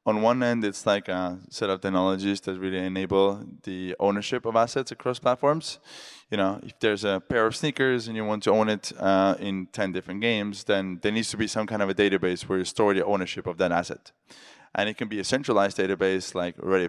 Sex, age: male, 20-39